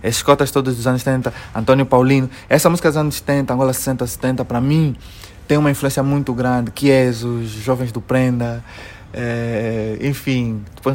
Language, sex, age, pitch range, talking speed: Portuguese, male, 20-39, 125-165 Hz, 160 wpm